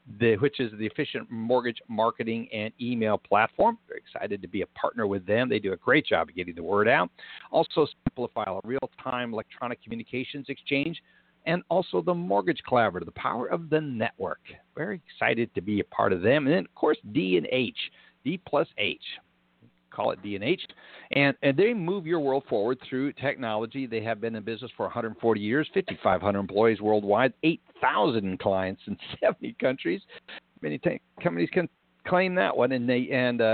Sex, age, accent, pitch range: male, 60-79, American, 110-135 Hz